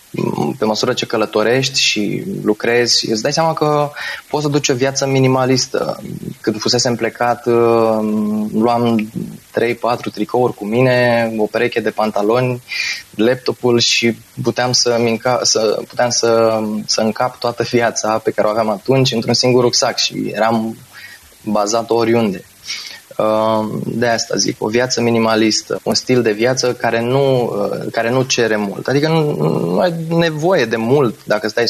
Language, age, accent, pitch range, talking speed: Romanian, 20-39, native, 110-130 Hz, 135 wpm